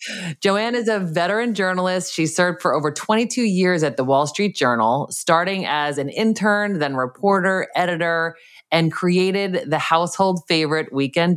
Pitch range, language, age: 135-185 Hz, English, 20-39